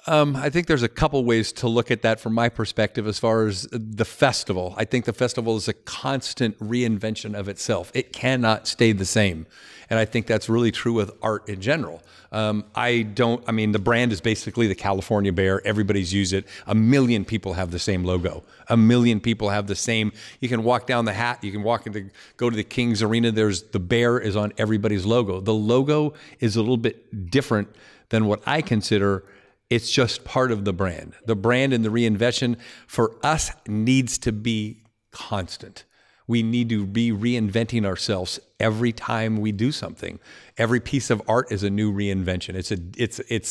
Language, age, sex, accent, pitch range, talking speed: English, 50-69, male, American, 105-120 Hz, 200 wpm